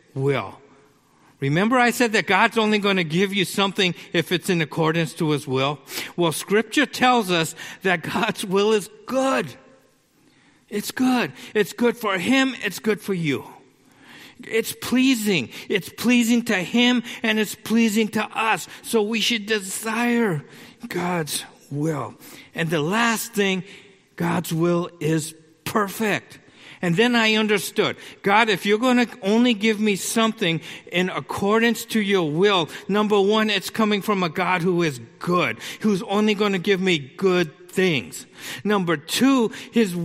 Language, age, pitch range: English, 50-69, 175-225 Hz